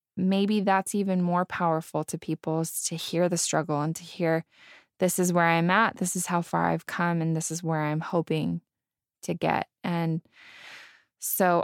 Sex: female